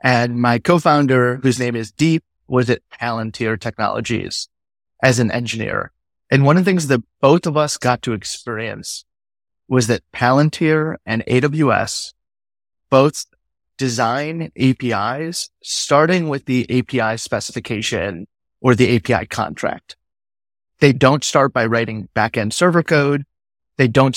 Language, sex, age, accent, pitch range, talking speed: English, male, 30-49, American, 115-140 Hz, 130 wpm